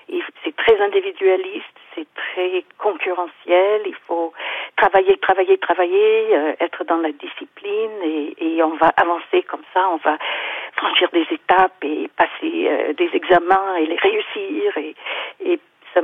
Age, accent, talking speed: 50-69, French, 150 wpm